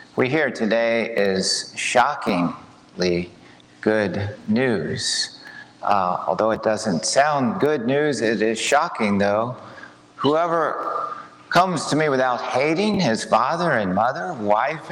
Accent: American